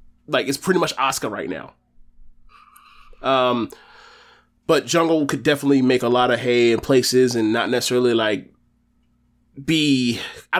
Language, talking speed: English, 140 wpm